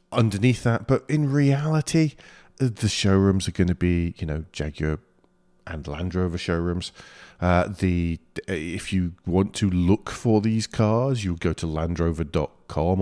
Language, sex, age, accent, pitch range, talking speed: English, male, 40-59, British, 85-115 Hz, 155 wpm